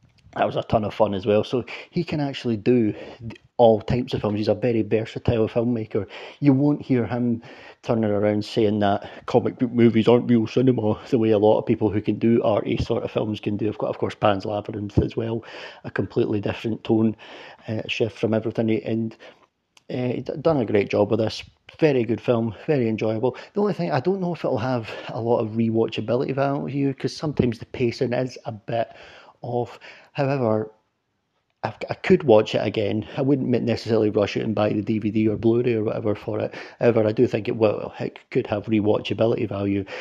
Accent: British